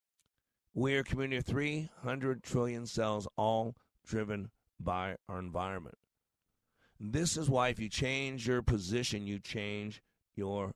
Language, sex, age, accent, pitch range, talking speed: English, male, 50-69, American, 110-135 Hz, 130 wpm